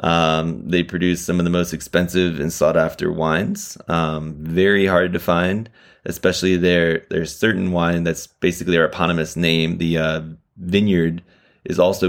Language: English